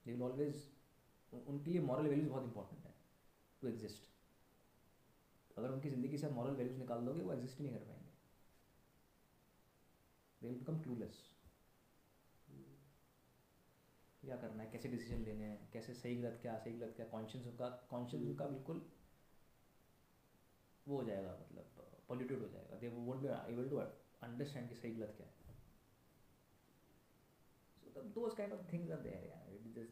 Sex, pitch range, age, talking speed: male, 105-135 Hz, 20-39, 95 wpm